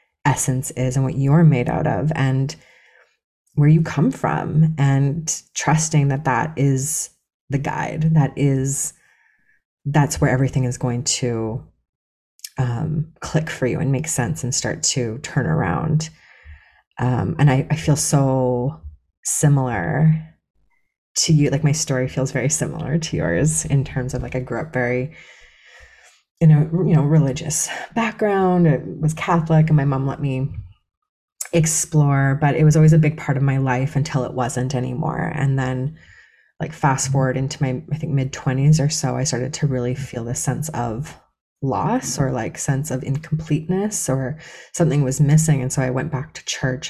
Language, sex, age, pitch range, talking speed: English, female, 30-49, 130-155 Hz, 170 wpm